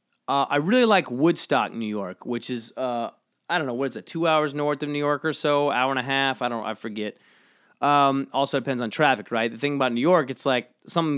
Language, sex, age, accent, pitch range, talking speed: English, male, 30-49, American, 125-155 Hz, 245 wpm